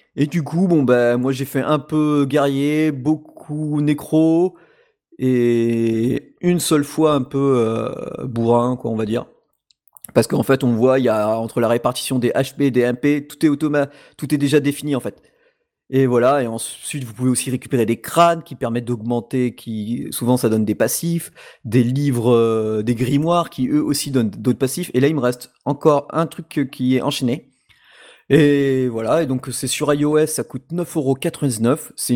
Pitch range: 120-150 Hz